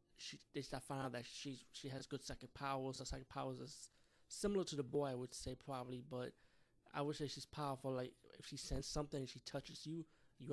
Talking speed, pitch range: 230 wpm, 130-140 Hz